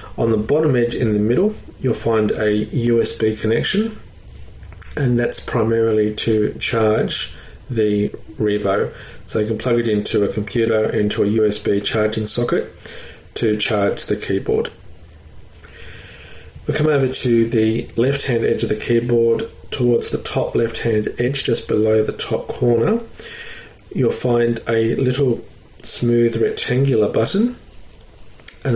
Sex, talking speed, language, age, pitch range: male, 135 wpm, English, 40-59, 110-125 Hz